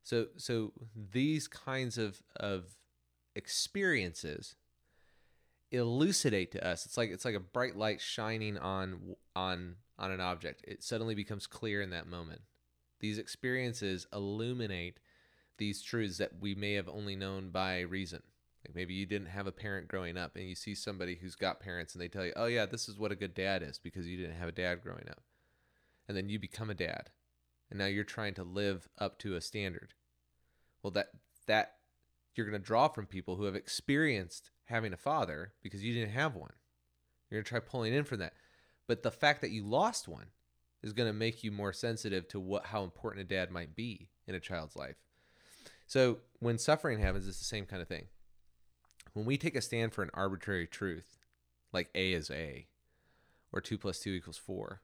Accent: American